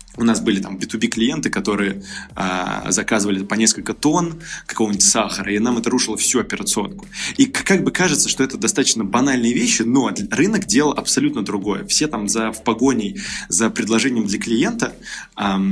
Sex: male